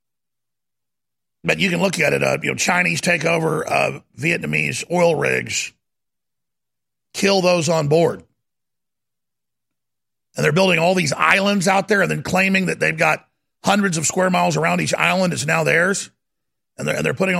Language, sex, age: English, male, 50-69